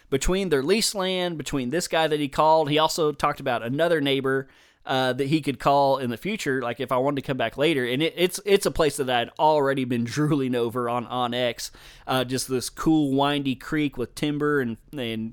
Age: 20-39